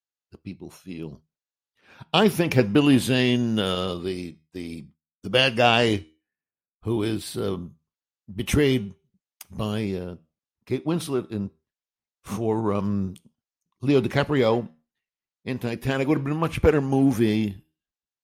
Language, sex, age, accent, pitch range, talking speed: English, male, 60-79, American, 95-130 Hz, 120 wpm